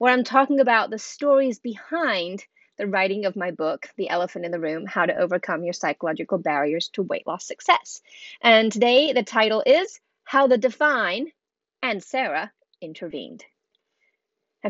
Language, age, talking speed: English, 30-49, 160 wpm